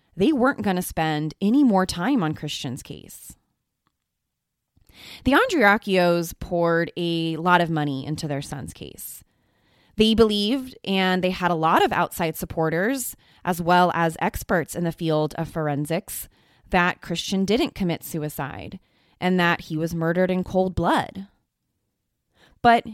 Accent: American